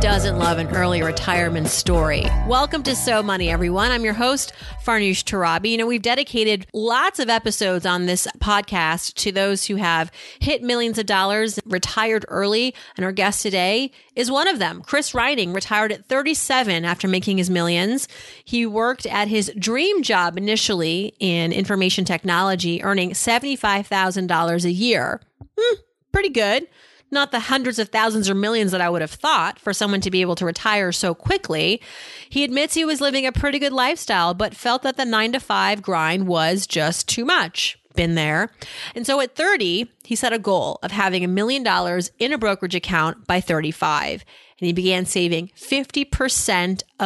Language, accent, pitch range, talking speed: English, American, 180-240 Hz, 175 wpm